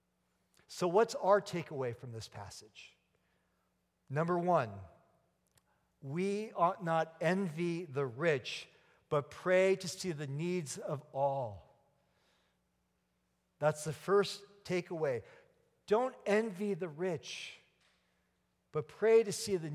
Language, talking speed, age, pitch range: English, 110 wpm, 50-69, 140-195 Hz